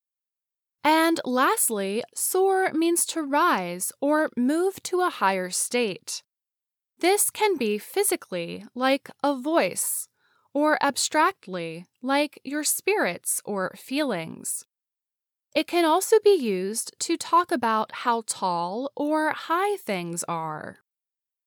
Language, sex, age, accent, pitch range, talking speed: English, female, 10-29, American, 200-325 Hz, 110 wpm